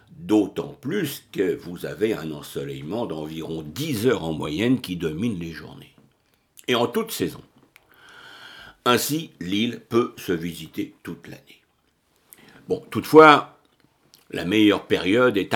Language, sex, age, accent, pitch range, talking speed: French, male, 60-79, French, 90-135 Hz, 125 wpm